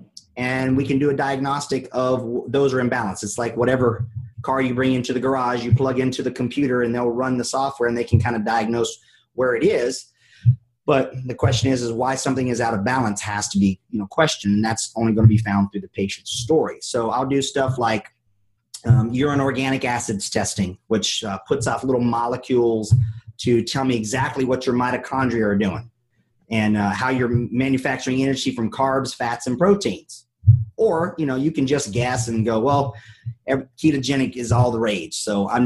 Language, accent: English, American